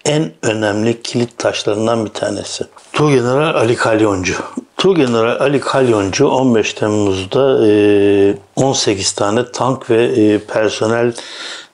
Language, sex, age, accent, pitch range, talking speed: Turkish, male, 60-79, native, 105-120 Hz, 105 wpm